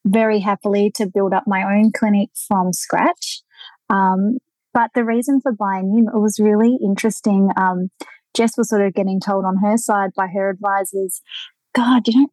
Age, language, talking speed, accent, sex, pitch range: 20-39, English, 175 wpm, Australian, female, 195-235 Hz